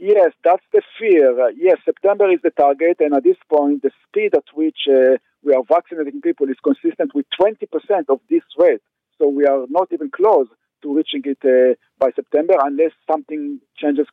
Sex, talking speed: male, 190 wpm